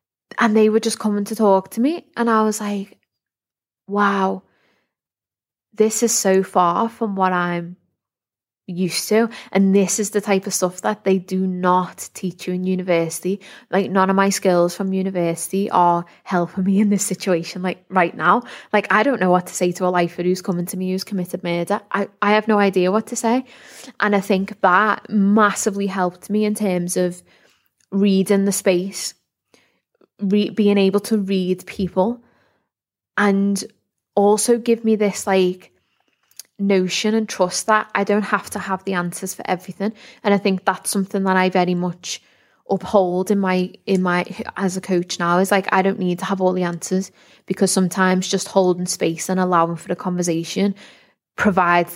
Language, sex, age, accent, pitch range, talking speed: English, female, 20-39, British, 180-205 Hz, 180 wpm